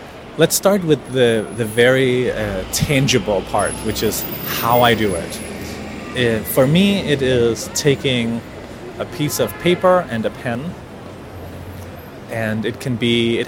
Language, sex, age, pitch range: English, male, 30-49, 110-140 Hz